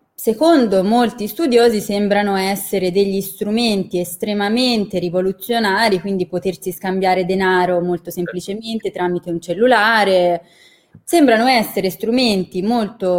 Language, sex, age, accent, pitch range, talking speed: Italian, female, 20-39, native, 180-220 Hz, 100 wpm